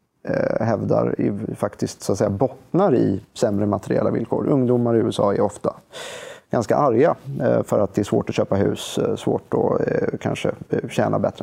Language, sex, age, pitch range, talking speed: Swedish, male, 30-49, 105-125 Hz, 160 wpm